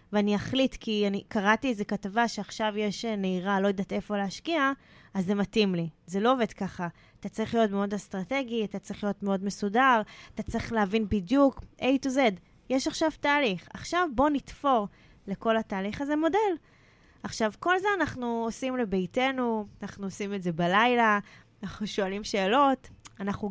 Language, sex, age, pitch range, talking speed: Hebrew, female, 20-39, 195-235 Hz, 165 wpm